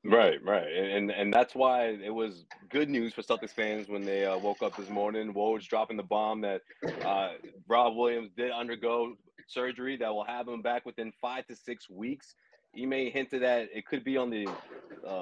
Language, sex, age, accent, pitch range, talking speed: English, male, 30-49, American, 105-140 Hz, 205 wpm